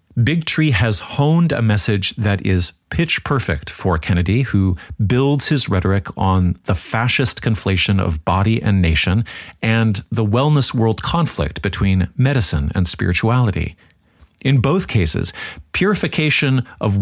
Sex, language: male, English